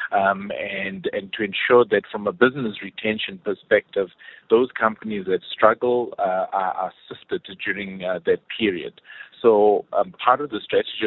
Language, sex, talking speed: English, male, 150 wpm